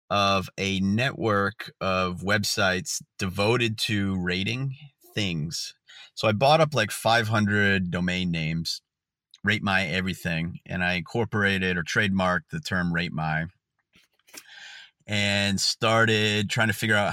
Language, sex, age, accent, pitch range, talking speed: English, male, 30-49, American, 85-105 Hz, 125 wpm